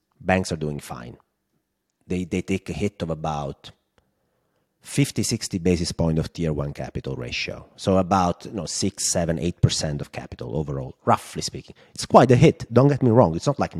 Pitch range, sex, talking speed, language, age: 80-100 Hz, male, 185 wpm, English, 30-49